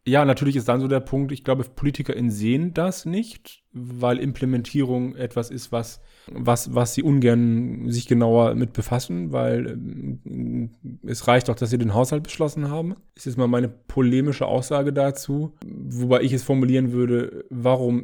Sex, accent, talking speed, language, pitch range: male, German, 165 wpm, English, 120-140 Hz